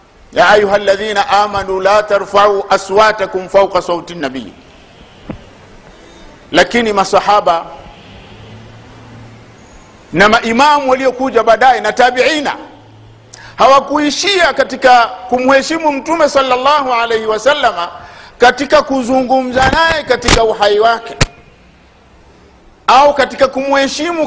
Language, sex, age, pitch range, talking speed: Swahili, male, 50-69, 185-275 Hz, 85 wpm